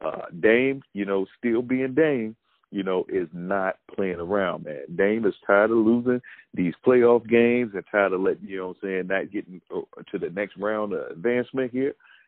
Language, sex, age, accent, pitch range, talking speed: English, male, 50-69, American, 90-110 Hz, 200 wpm